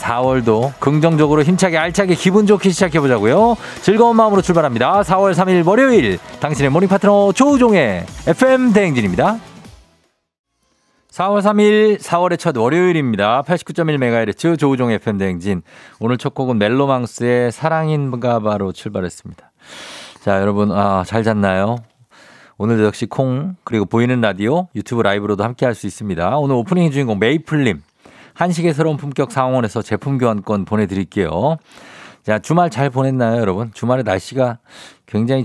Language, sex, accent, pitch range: Korean, male, native, 105-150 Hz